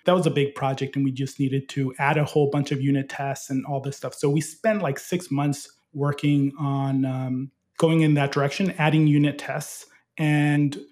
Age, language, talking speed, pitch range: 20-39, English, 210 wpm, 140-165 Hz